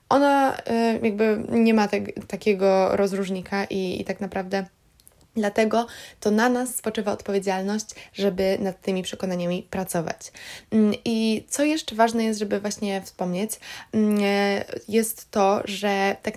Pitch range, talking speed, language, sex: 190-220 Hz, 120 wpm, Polish, female